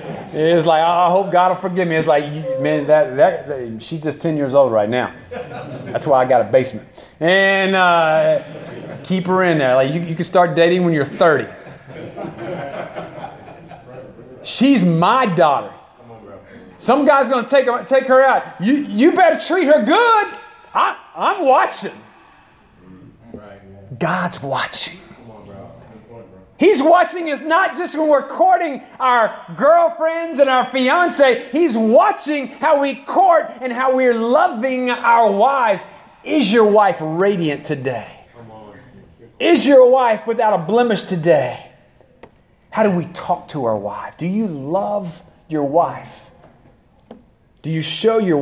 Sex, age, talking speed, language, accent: male, 40-59, 145 wpm, English, American